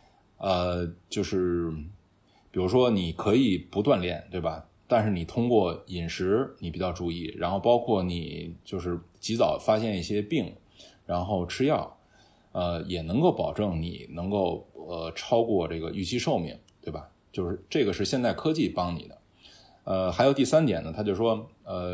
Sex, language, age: male, Chinese, 20-39